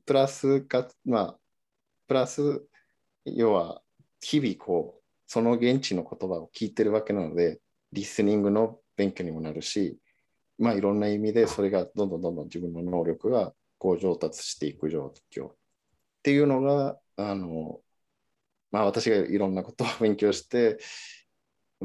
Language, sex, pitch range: Japanese, male, 90-120 Hz